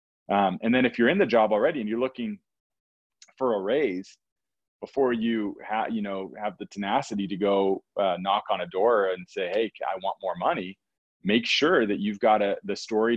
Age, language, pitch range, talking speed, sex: 30-49, English, 90-105 Hz, 205 wpm, male